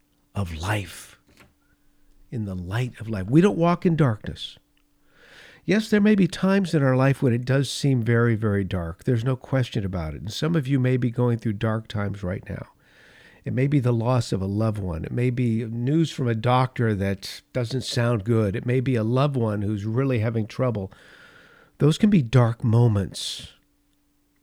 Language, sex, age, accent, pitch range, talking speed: English, male, 50-69, American, 100-130 Hz, 195 wpm